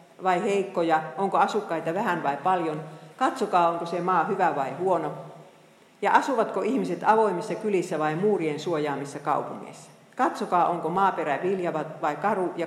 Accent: native